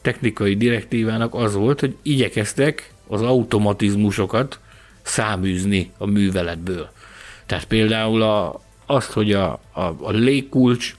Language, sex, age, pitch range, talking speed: Hungarian, male, 60-79, 100-125 Hz, 100 wpm